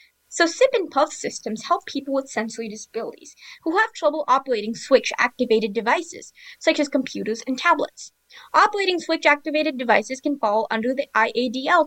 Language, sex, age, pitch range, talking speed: English, female, 10-29, 235-330 Hz, 145 wpm